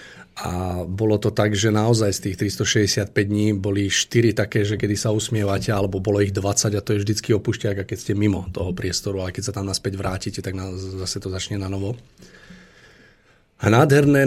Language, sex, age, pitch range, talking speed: Slovak, male, 40-59, 100-120 Hz, 195 wpm